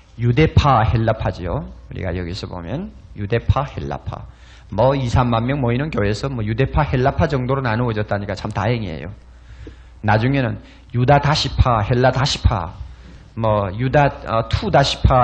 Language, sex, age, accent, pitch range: Korean, male, 40-59, native, 105-155 Hz